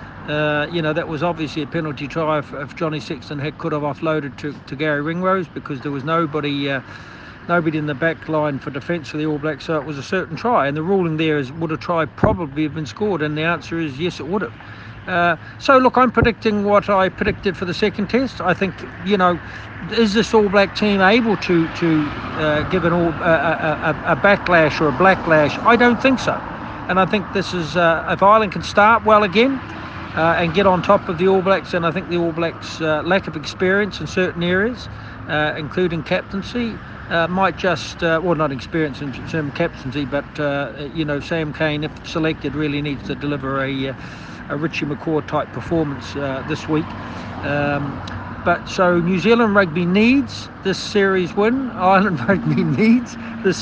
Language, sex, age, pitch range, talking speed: English, male, 60-79, 145-185 Hz, 210 wpm